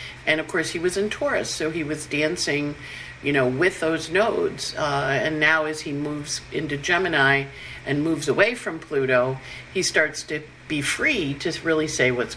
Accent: American